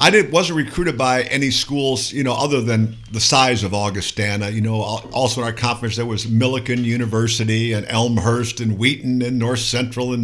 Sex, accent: male, American